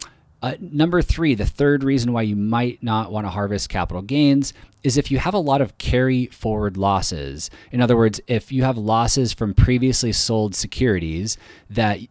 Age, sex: 20-39, male